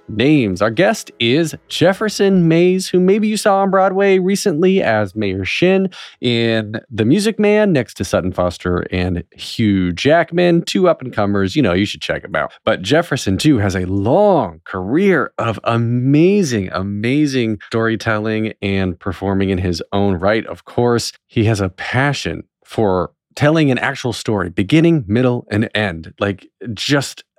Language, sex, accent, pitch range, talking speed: English, male, American, 100-155 Hz, 160 wpm